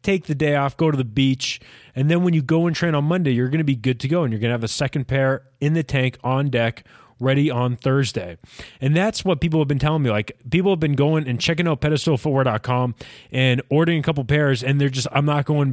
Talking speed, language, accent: 250 wpm, English, American